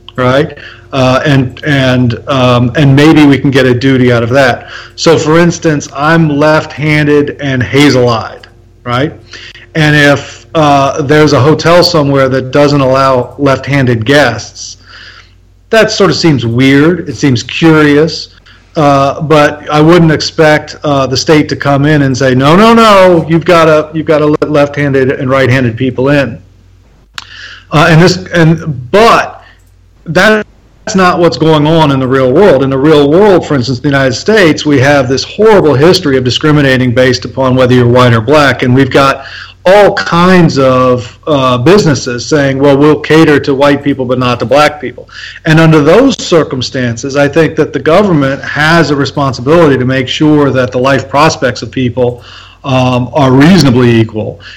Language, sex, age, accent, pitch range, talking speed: English, male, 40-59, American, 130-155 Hz, 170 wpm